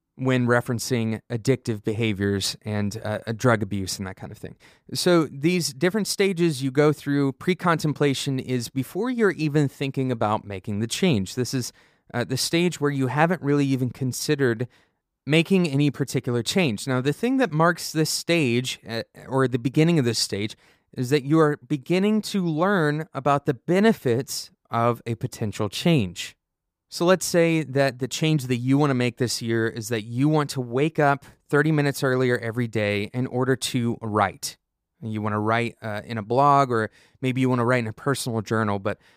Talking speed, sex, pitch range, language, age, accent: 185 wpm, male, 115-150 Hz, English, 20-39, American